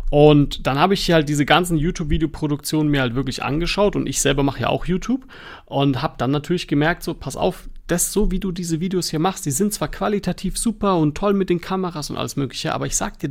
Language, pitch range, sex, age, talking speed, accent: German, 145-185 Hz, male, 40-59, 240 wpm, German